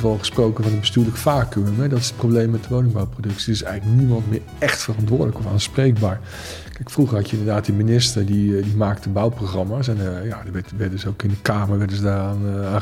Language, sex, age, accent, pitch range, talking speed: Dutch, male, 50-69, Dutch, 105-120 Hz, 210 wpm